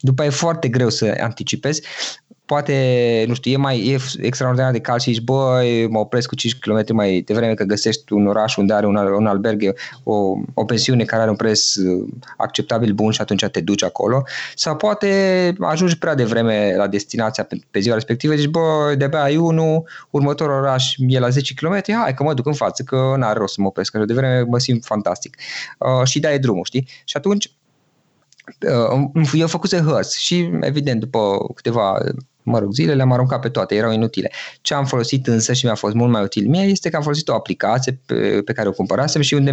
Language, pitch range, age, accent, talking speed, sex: Romanian, 110-145 Hz, 20-39, native, 210 wpm, male